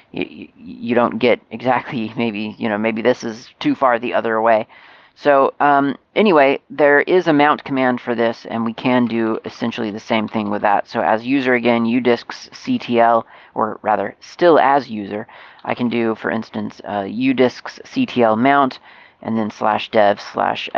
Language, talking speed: English, 165 wpm